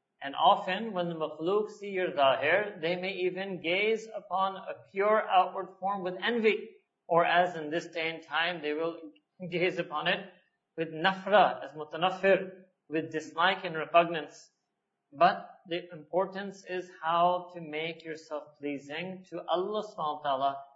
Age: 40-59